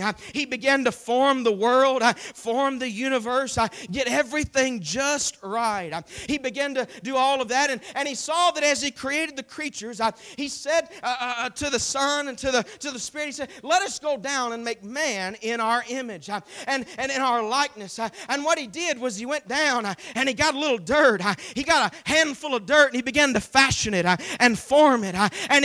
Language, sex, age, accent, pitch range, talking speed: English, male, 40-59, American, 235-290 Hz, 235 wpm